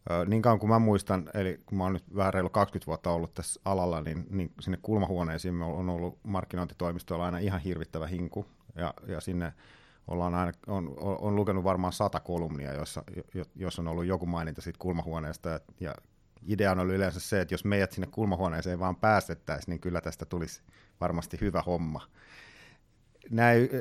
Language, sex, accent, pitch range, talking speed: Finnish, male, native, 85-100 Hz, 180 wpm